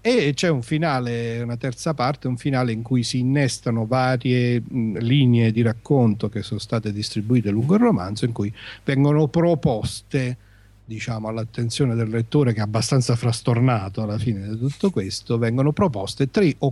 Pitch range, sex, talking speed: 105-130 Hz, male, 160 wpm